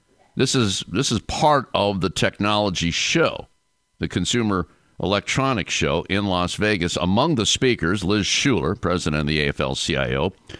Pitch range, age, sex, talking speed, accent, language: 85-110 Hz, 50-69, male, 140 wpm, American, English